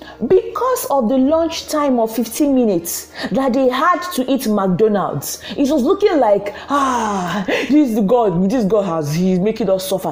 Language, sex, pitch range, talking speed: English, female, 185-290 Hz, 170 wpm